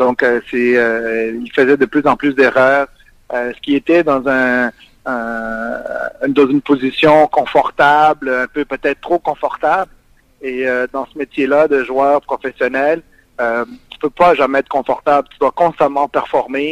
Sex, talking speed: male, 165 wpm